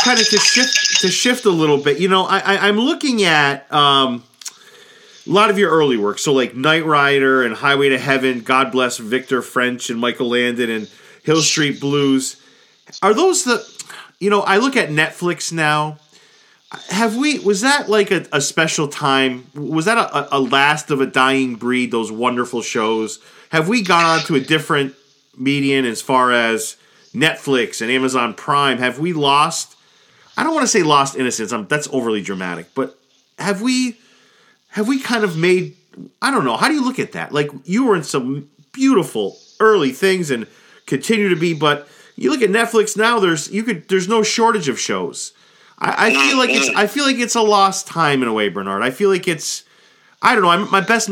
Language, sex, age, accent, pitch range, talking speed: English, male, 30-49, American, 135-210 Hz, 205 wpm